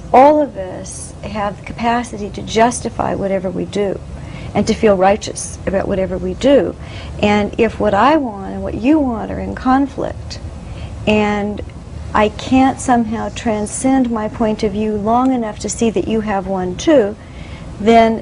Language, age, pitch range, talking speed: English, 50-69, 180-230 Hz, 165 wpm